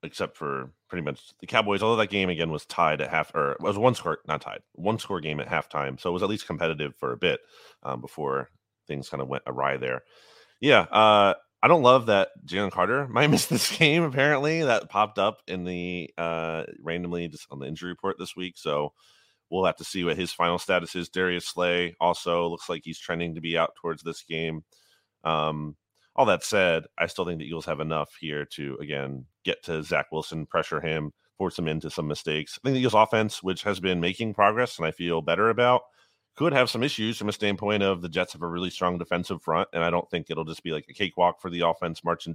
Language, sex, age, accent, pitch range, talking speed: English, male, 30-49, American, 80-105 Hz, 230 wpm